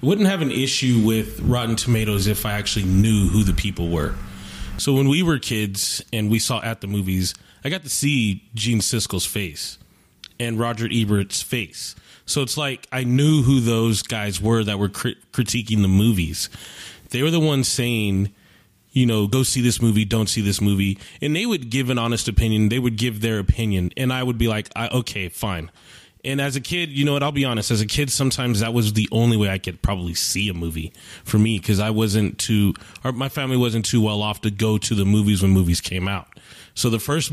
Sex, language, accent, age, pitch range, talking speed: male, English, American, 20-39, 100-120 Hz, 220 wpm